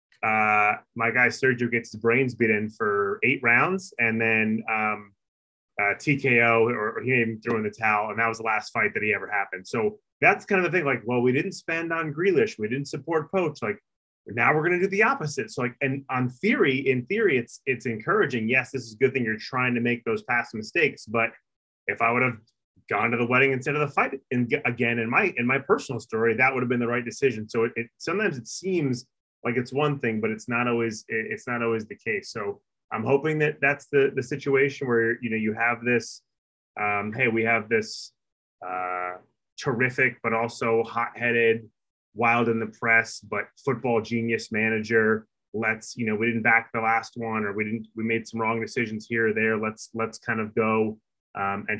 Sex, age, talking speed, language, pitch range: male, 30-49, 220 wpm, English, 110-130 Hz